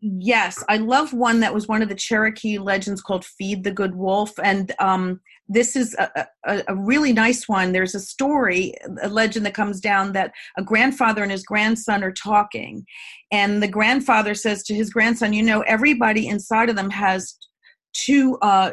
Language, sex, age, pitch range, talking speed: English, female, 40-59, 200-245 Hz, 185 wpm